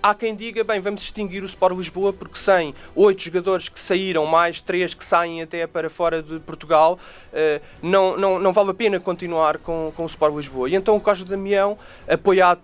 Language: Portuguese